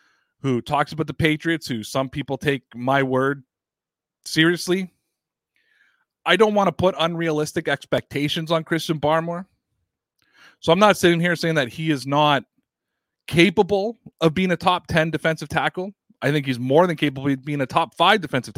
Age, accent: 30-49, American